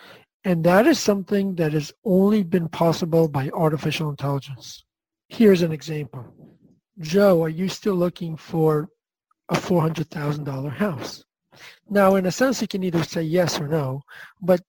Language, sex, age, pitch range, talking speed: English, male, 50-69, 155-190 Hz, 145 wpm